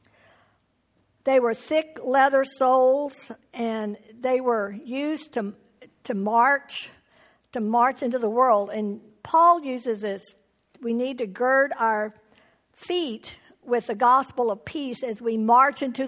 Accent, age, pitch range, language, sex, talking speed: American, 60-79, 230-280 Hz, English, female, 135 wpm